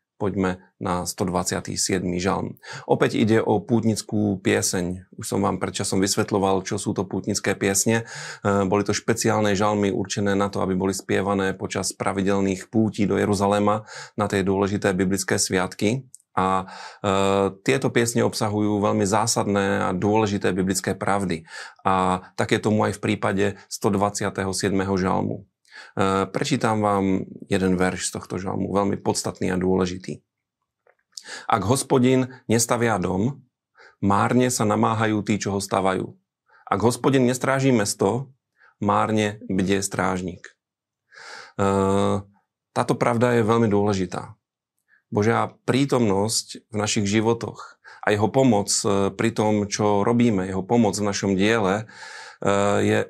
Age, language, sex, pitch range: 30-49, Slovak, male, 95-110 Hz